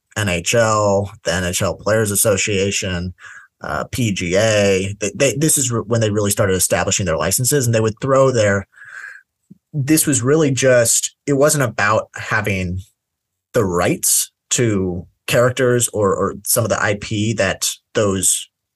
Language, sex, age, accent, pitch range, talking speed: English, male, 30-49, American, 95-115 Hz, 130 wpm